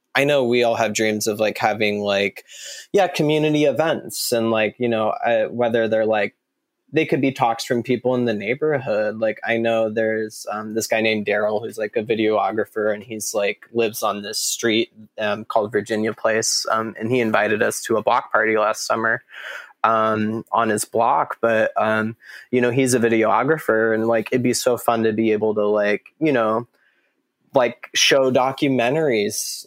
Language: English